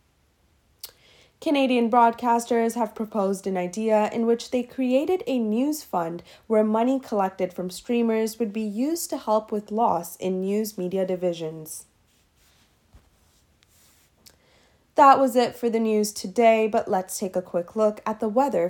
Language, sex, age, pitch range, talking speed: English, female, 20-39, 170-235 Hz, 145 wpm